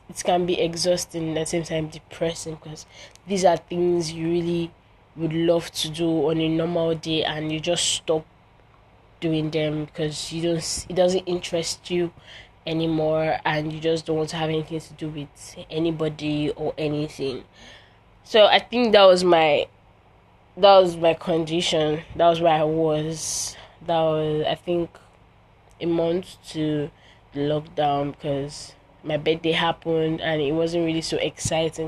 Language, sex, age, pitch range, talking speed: English, female, 20-39, 150-170 Hz, 160 wpm